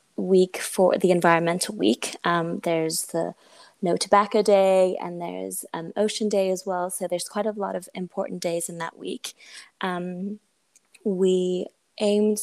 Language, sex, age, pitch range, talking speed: English, female, 20-39, 175-205 Hz, 155 wpm